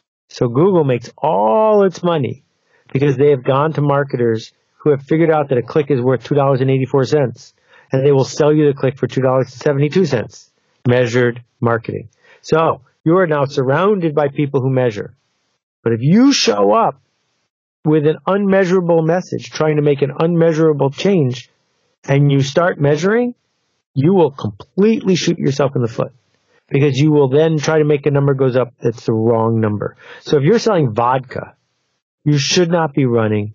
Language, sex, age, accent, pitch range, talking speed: English, male, 50-69, American, 125-170 Hz, 170 wpm